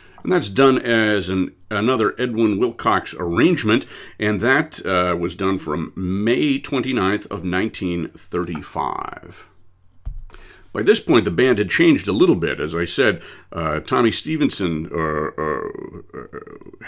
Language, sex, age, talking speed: English, male, 50-69, 130 wpm